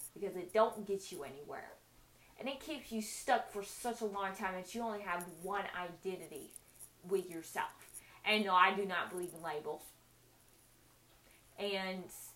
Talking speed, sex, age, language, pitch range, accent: 160 wpm, female, 20-39, English, 175-205 Hz, American